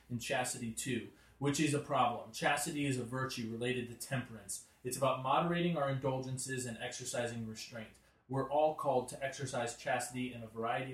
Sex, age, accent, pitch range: male, 30-49, American, 120-145 Hz